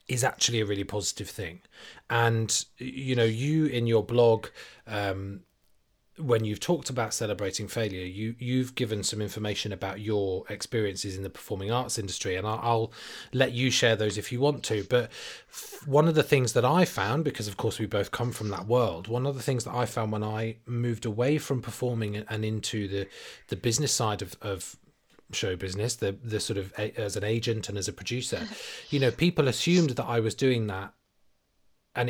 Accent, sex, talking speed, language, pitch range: British, male, 195 wpm, English, 105-125 Hz